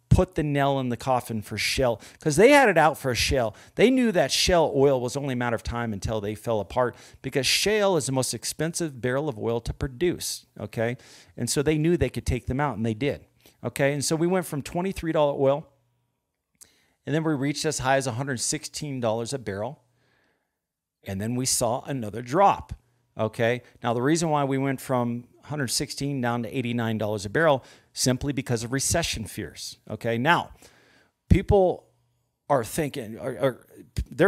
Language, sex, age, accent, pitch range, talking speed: English, male, 50-69, American, 120-150 Hz, 185 wpm